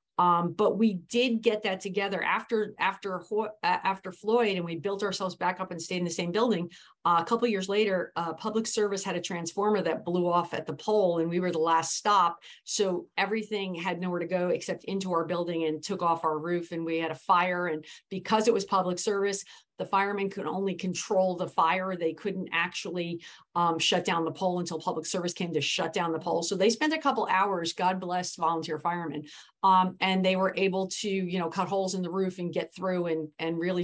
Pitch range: 175-210 Hz